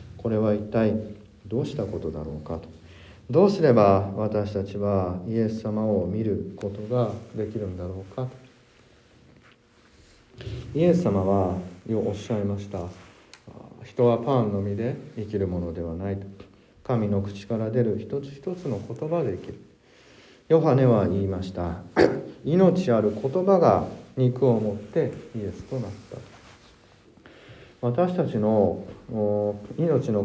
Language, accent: Japanese, native